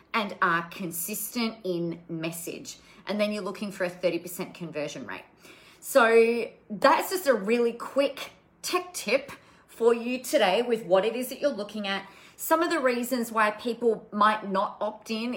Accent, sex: Australian, female